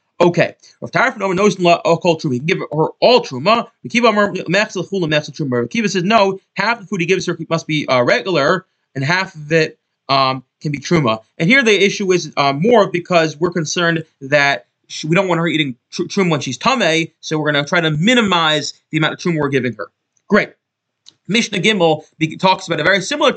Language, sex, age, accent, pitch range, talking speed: English, male, 30-49, American, 150-195 Hz, 210 wpm